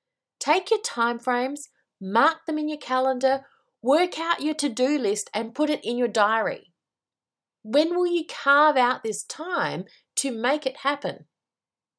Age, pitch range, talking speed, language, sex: 30-49, 200-285 Hz, 150 wpm, English, female